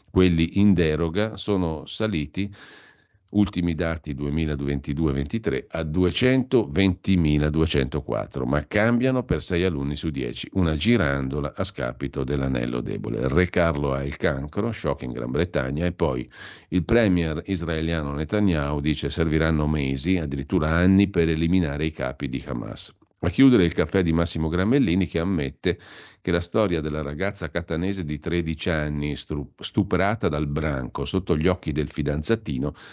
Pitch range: 75-95 Hz